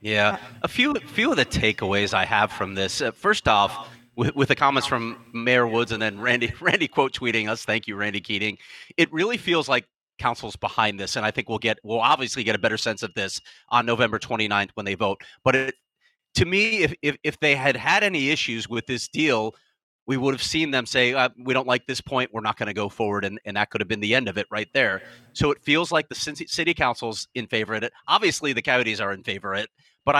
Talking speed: 245 wpm